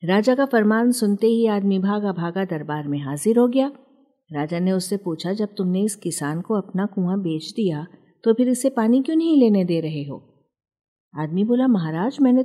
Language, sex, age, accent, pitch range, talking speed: Hindi, female, 50-69, native, 175-245 Hz, 195 wpm